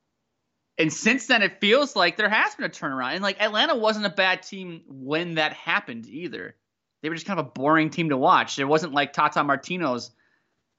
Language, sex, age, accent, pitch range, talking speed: English, male, 20-39, American, 135-170 Hz, 205 wpm